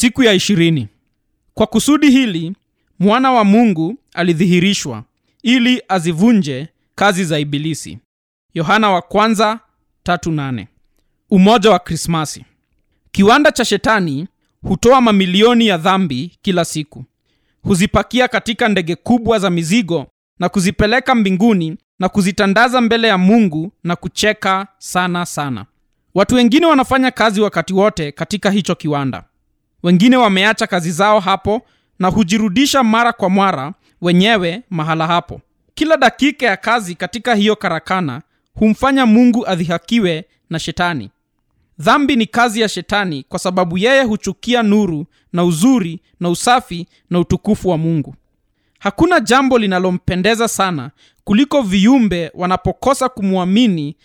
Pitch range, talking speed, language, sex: 170-225 Hz, 120 wpm, Swahili, male